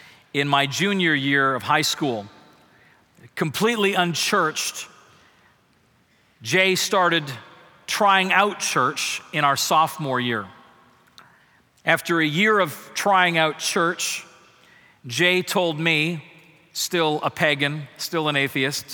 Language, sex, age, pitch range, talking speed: English, male, 40-59, 140-180 Hz, 110 wpm